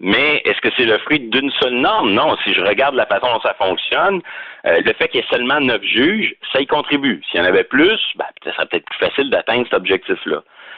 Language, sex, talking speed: French, male, 240 wpm